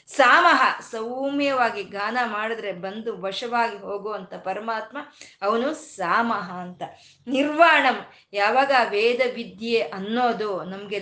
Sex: female